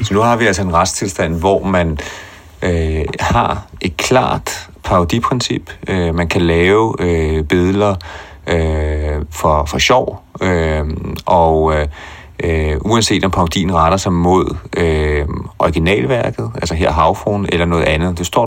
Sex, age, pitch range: male, 30-49, 80-95 Hz